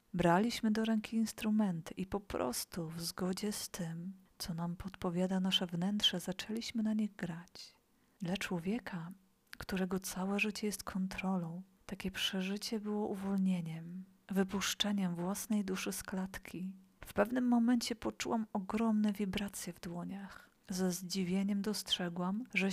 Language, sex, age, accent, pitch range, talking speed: Polish, female, 40-59, native, 185-215 Hz, 125 wpm